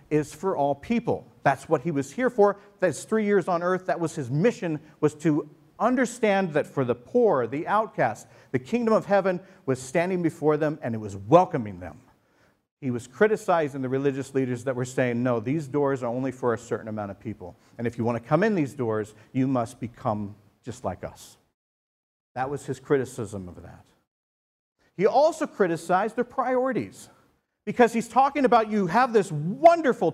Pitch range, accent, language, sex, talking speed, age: 130-195 Hz, American, English, male, 185 wpm, 50-69